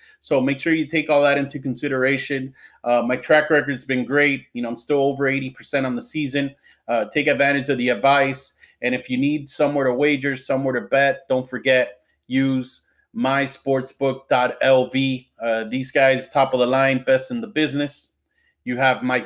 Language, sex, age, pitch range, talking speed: English, male, 30-49, 125-140 Hz, 185 wpm